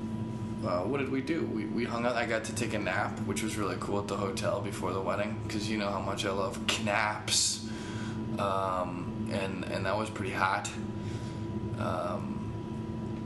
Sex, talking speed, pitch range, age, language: male, 185 wpm, 105-110 Hz, 20-39, English